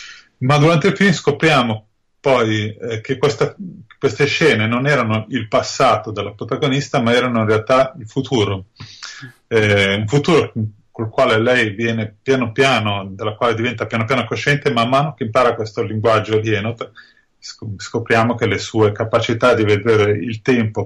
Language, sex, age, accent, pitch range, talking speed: Italian, male, 30-49, native, 105-125 Hz, 160 wpm